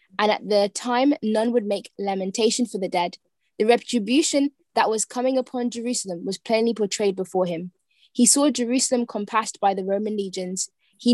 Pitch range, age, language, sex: 195-235 Hz, 20-39, English, female